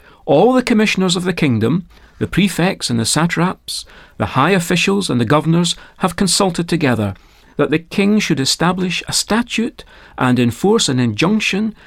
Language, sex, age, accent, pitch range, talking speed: English, male, 40-59, British, 120-190 Hz, 155 wpm